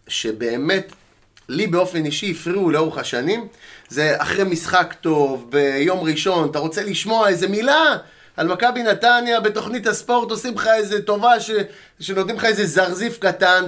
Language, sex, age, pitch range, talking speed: Hebrew, male, 30-49, 155-200 Hz, 145 wpm